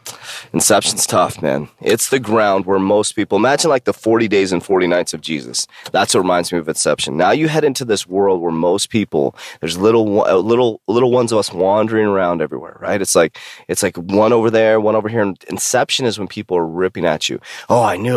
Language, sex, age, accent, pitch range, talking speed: English, male, 30-49, American, 95-120 Hz, 220 wpm